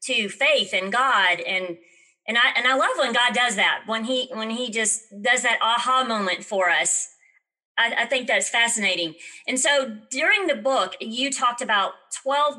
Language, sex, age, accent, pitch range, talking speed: English, female, 40-59, American, 210-265 Hz, 185 wpm